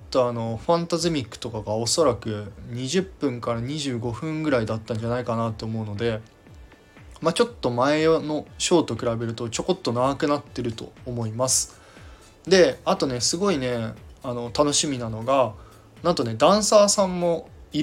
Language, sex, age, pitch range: Japanese, male, 20-39, 110-145 Hz